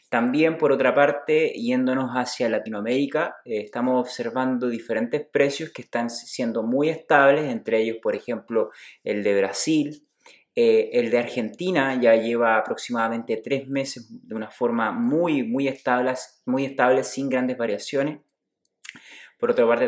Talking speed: 140 wpm